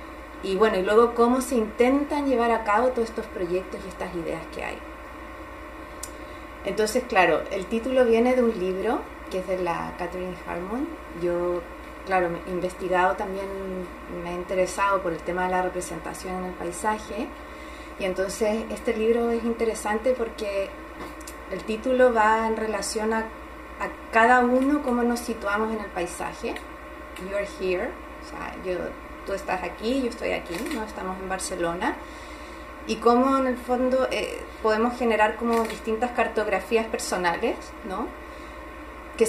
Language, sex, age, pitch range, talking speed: Spanish, female, 30-49, 185-230 Hz, 155 wpm